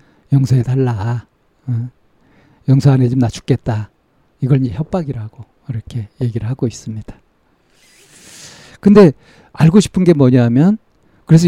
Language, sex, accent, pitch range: Korean, male, native, 115-145 Hz